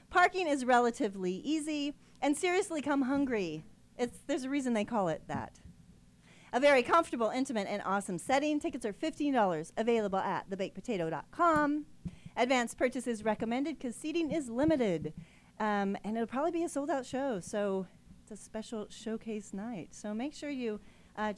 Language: English